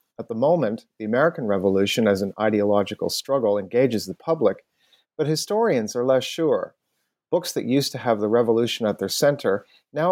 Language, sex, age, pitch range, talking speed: English, male, 40-59, 105-135 Hz, 170 wpm